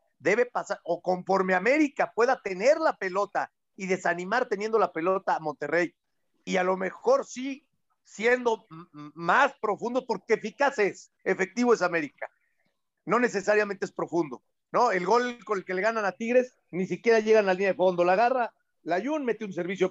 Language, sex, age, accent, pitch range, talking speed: Spanish, male, 50-69, Mexican, 180-235 Hz, 180 wpm